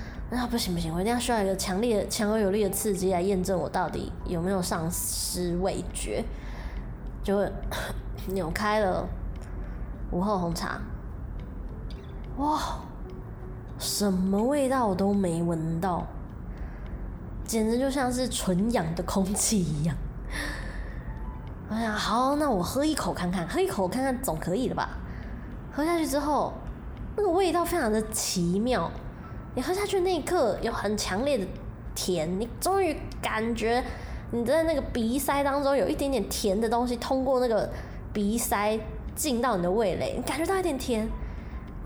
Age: 20-39